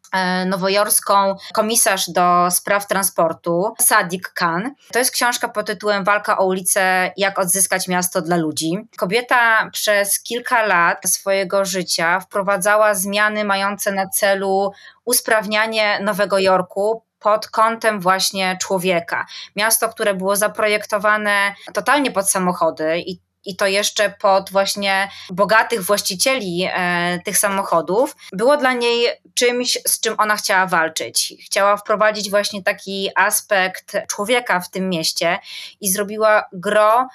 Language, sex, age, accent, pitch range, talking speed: Polish, female, 20-39, native, 185-215 Hz, 125 wpm